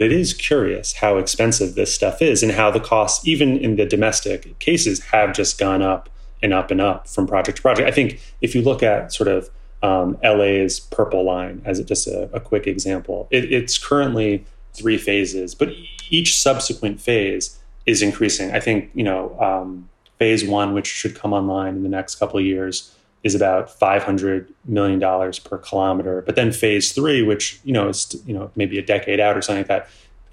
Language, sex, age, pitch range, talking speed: English, male, 30-49, 95-110 Hz, 195 wpm